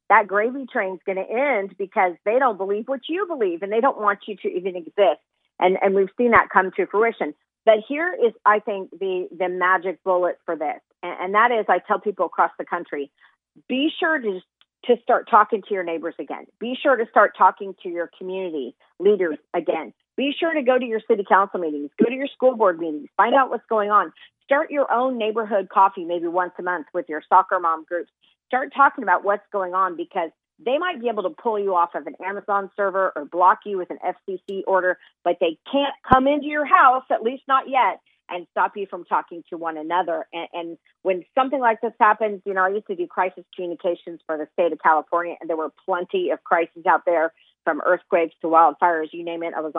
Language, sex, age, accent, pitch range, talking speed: English, female, 40-59, American, 175-235 Hz, 225 wpm